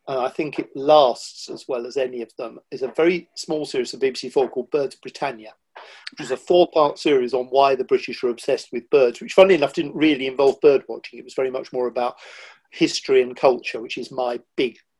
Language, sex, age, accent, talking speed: English, male, 50-69, British, 230 wpm